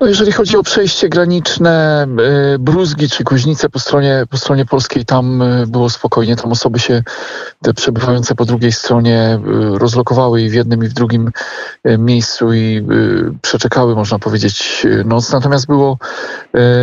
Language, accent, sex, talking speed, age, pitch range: Polish, native, male, 140 wpm, 40-59, 115-130 Hz